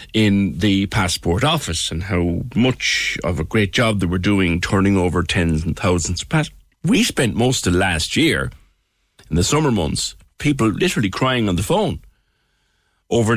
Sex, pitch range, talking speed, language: male, 85-120 Hz, 170 wpm, English